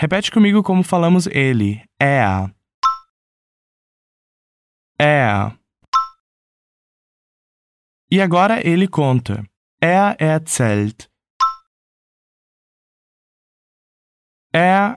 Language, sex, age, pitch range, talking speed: Portuguese, male, 20-39, 125-210 Hz, 65 wpm